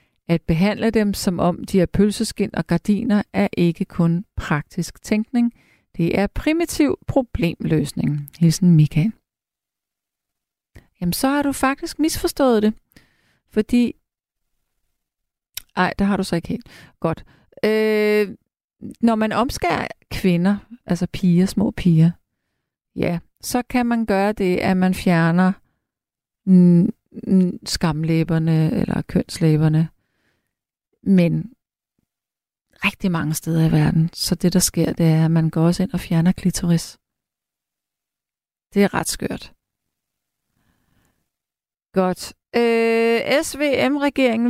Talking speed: 115 wpm